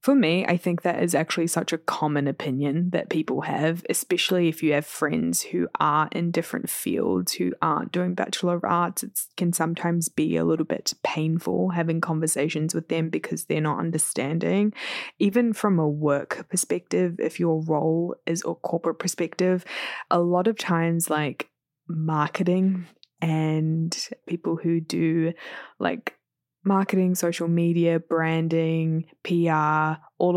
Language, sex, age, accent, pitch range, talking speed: English, female, 20-39, Australian, 160-175 Hz, 150 wpm